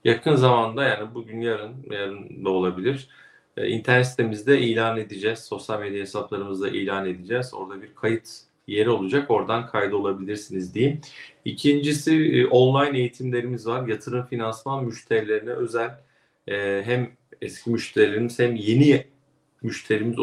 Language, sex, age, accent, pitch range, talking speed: Turkish, male, 40-59, native, 105-135 Hz, 130 wpm